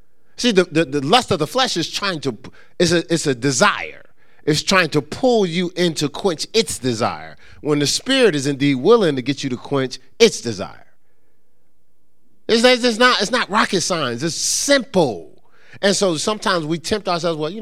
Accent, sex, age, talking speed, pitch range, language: American, male, 30-49, 185 wpm, 135-220 Hz, English